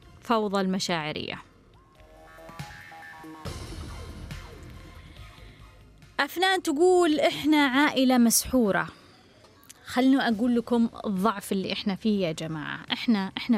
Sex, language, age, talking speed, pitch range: female, Arabic, 20-39, 80 wpm, 190-250 Hz